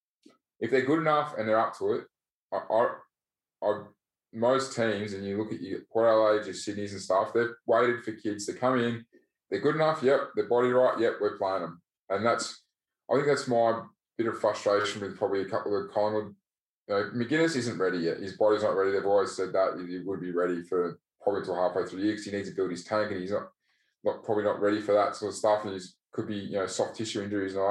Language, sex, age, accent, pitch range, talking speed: English, male, 20-39, Australian, 100-115 Hz, 245 wpm